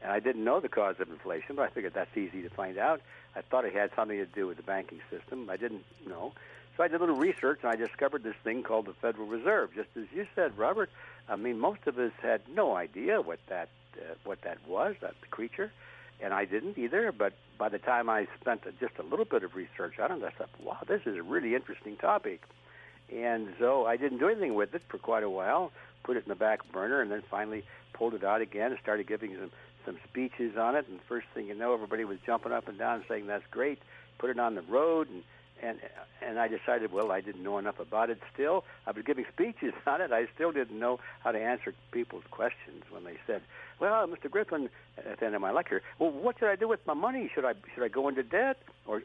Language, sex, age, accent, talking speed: English, male, 60-79, American, 245 wpm